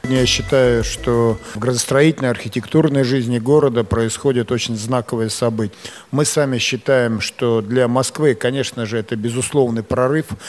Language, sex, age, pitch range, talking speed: Russian, male, 50-69, 115-140 Hz, 130 wpm